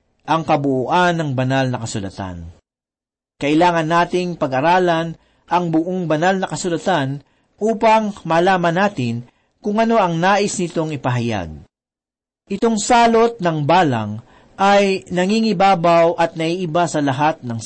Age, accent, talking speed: 50-69, native, 115 wpm